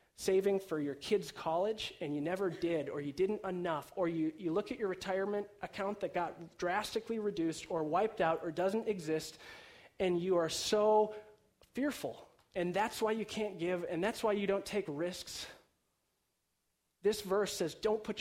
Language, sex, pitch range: English, male, 165-215 Hz